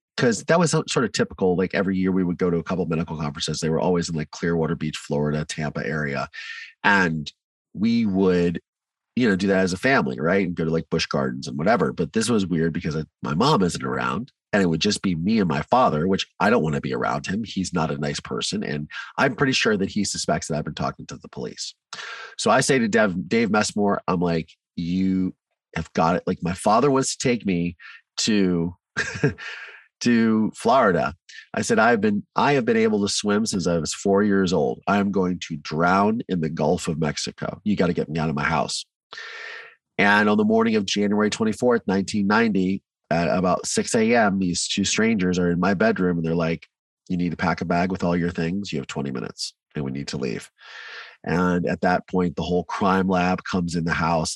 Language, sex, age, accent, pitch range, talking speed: English, male, 30-49, American, 85-105 Hz, 225 wpm